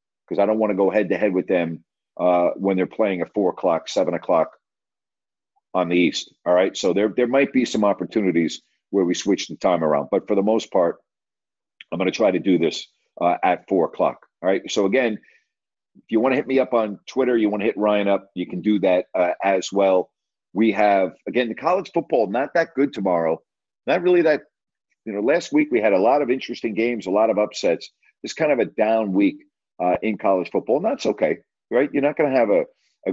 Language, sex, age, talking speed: English, male, 50-69, 230 wpm